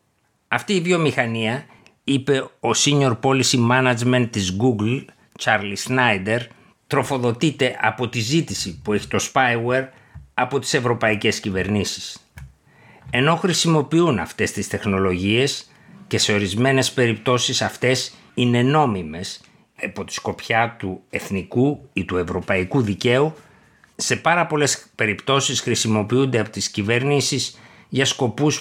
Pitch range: 110-140 Hz